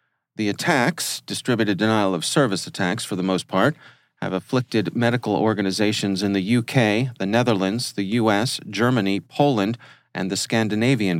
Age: 40-59